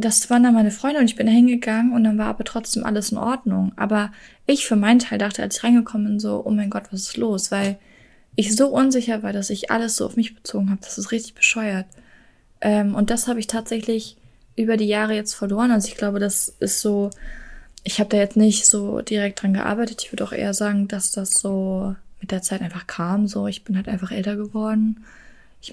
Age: 20-39